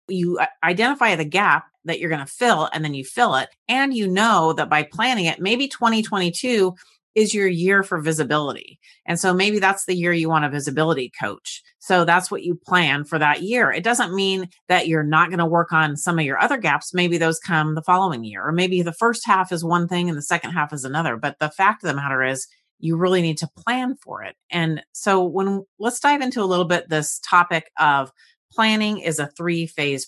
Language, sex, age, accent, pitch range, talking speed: English, female, 30-49, American, 160-195 Hz, 225 wpm